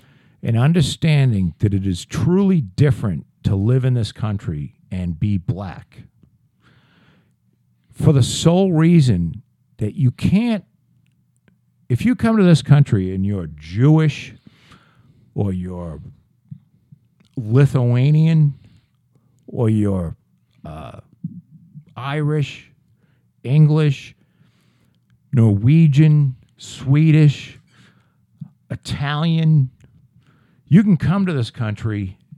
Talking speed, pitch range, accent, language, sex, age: 90 wpm, 105-155 Hz, American, English, male, 50-69